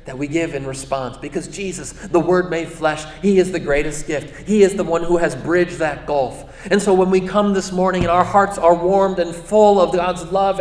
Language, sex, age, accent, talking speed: English, male, 40-59, American, 240 wpm